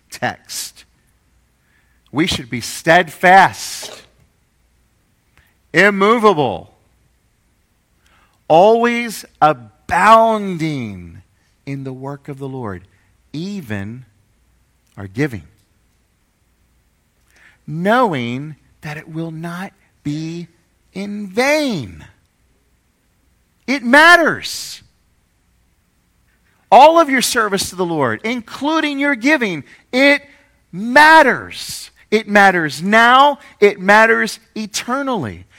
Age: 50-69